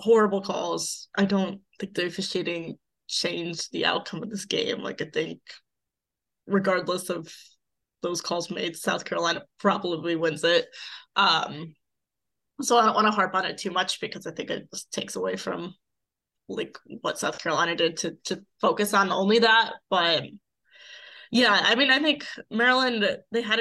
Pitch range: 165-200 Hz